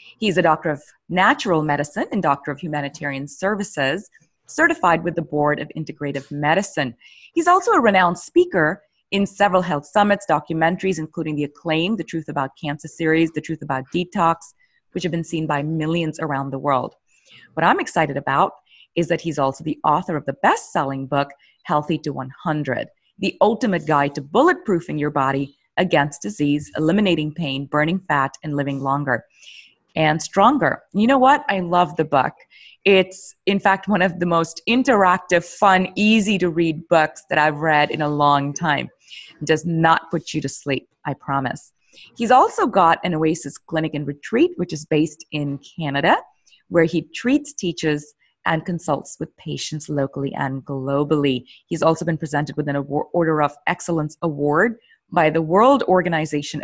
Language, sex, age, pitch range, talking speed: English, female, 30-49, 145-185 Hz, 165 wpm